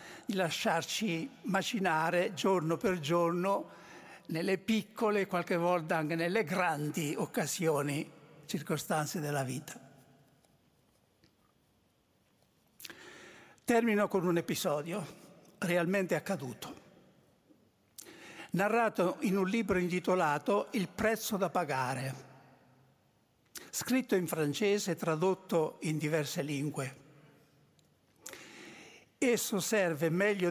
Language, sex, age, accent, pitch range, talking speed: Italian, male, 60-79, native, 160-210 Hz, 85 wpm